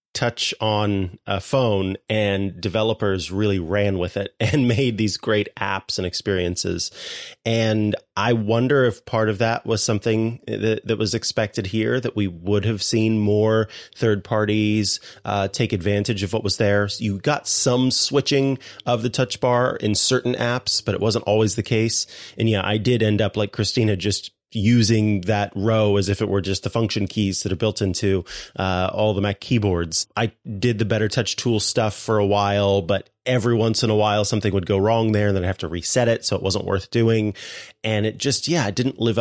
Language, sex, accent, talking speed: English, male, American, 200 wpm